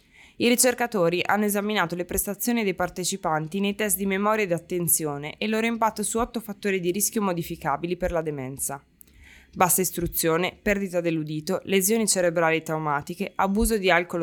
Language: Italian